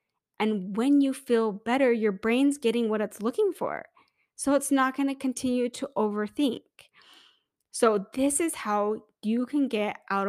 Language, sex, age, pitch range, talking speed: English, female, 10-29, 200-255 Hz, 165 wpm